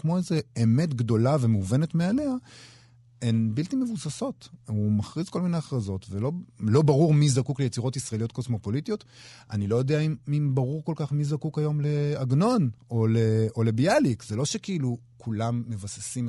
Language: Hebrew